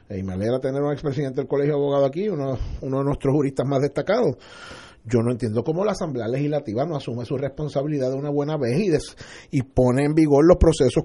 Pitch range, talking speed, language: 145-190 Hz, 225 wpm, Spanish